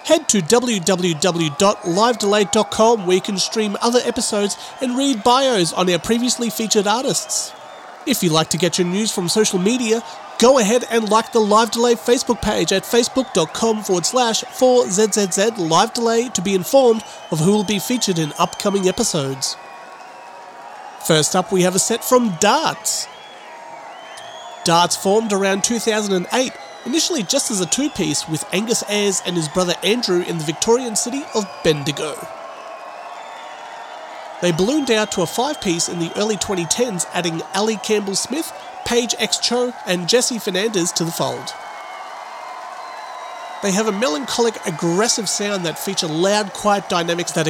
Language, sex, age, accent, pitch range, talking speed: English, male, 30-49, Australian, 180-235 Hz, 150 wpm